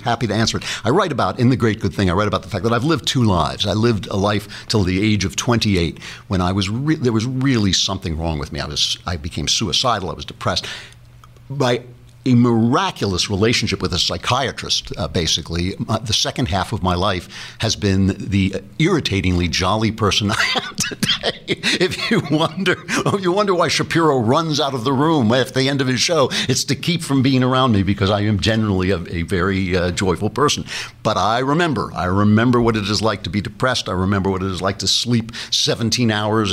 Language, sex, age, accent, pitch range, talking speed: English, male, 60-79, American, 95-125 Hz, 220 wpm